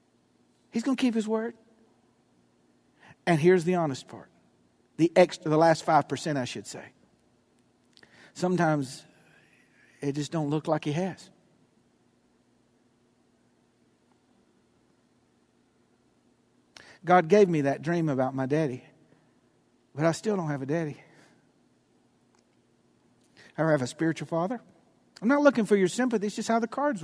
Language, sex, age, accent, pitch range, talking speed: English, male, 60-79, American, 145-190 Hz, 130 wpm